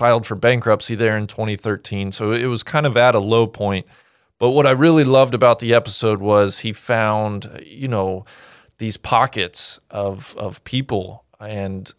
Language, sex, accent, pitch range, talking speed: English, male, American, 105-125 Hz, 170 wpm